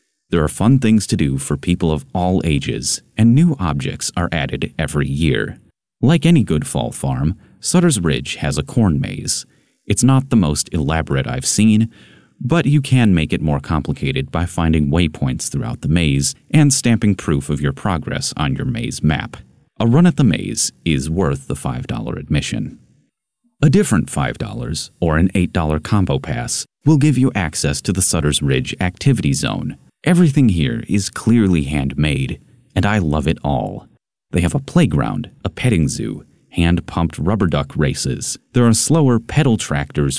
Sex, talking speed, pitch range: male, 170 wpm, 80-125 Hz